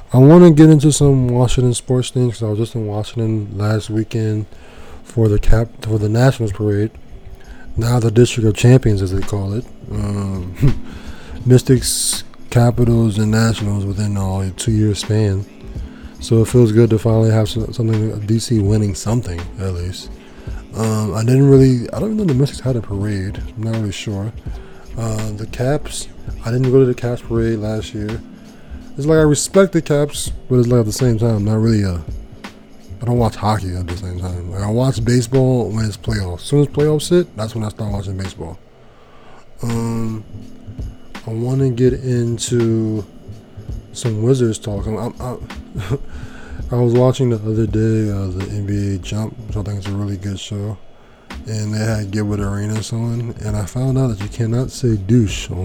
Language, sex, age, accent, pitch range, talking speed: English, male, 20-39, American, 105-120 Hz, 195 wpm